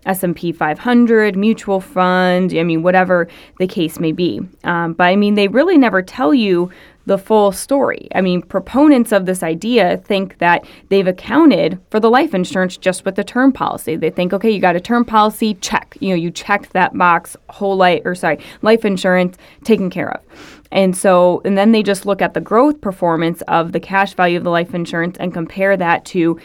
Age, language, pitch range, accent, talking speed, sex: 20-39, English, 180-210 Hz, American, 200 wpm, female